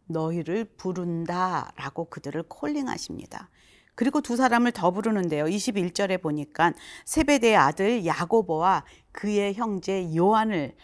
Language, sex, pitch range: Korean, female, 165-230 Hz